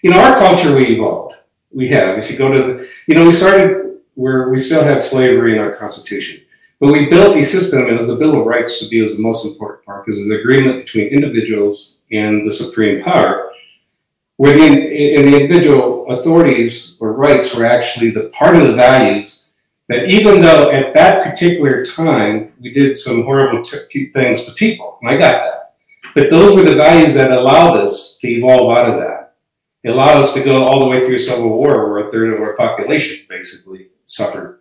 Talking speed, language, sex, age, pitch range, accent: 205 wpm, English, male, 50-69, 120-160 Hz, American